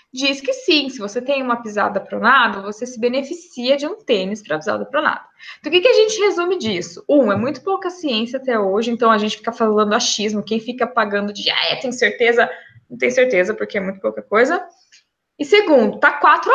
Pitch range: 235-305 Hz